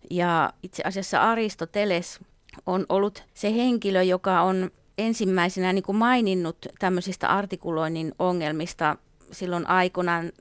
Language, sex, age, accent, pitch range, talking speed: Finnish, female, 30-49, native, 170-195 Hz, 110 wpm